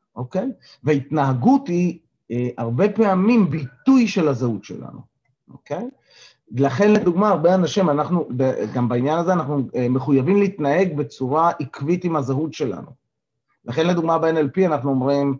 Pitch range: 130-185 Hz